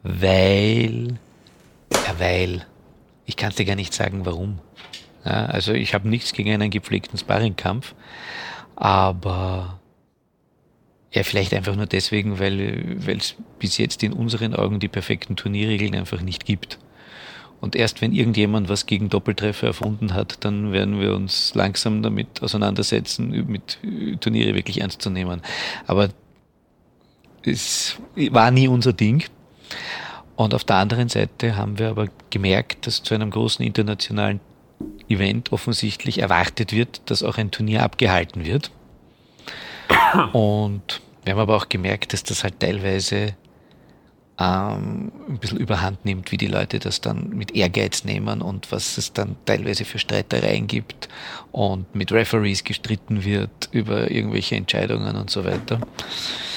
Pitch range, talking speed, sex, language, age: 95-110 Hz, 140 wpm, male, German, 40-59